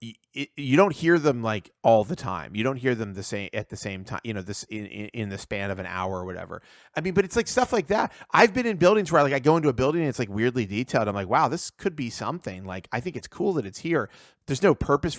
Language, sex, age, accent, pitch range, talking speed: English, male, 30-49, American, 105-155 Hz, 290 wpm